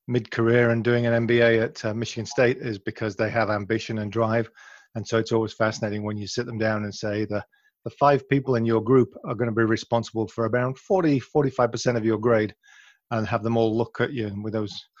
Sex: male